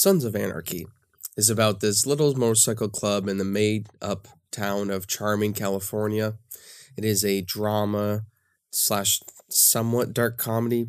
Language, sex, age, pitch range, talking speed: English, male, 20-39, 100-115 Hz, 110 wpm